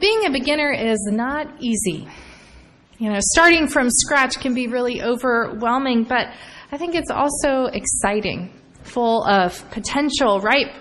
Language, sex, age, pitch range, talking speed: English, female, 20-39, 215-295 Hz, 140 wpm